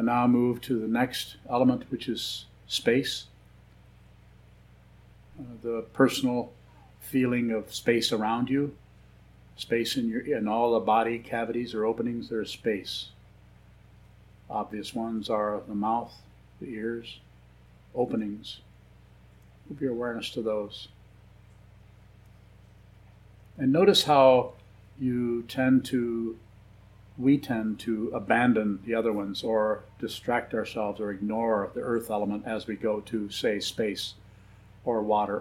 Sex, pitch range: male, 105-120 Hz